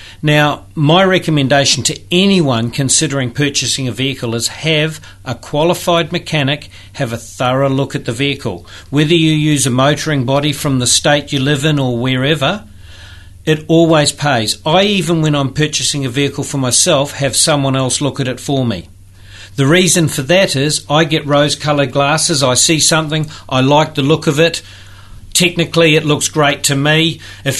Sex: male